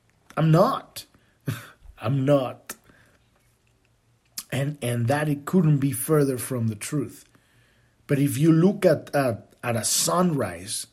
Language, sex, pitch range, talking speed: English, male, 120-180 Hz, 125 wpm